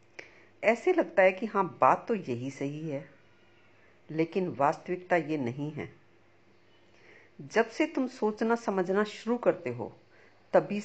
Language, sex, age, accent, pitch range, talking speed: Hindi, female, 50-69, native, 115-185 Hz, 135 wpm